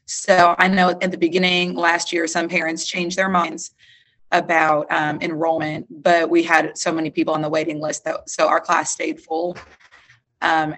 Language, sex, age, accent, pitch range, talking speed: English, female, 30-49, American, 160-195 Hz, 185 wpm